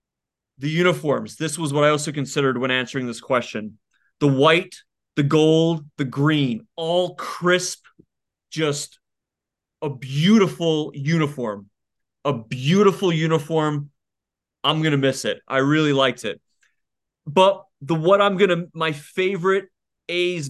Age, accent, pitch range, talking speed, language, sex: 30-49, American, 140-170 Hz, 130 wpm, English, male